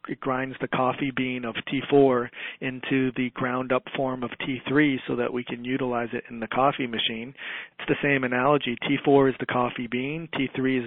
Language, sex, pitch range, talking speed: English, male, 125-140 Hz, 190 wpm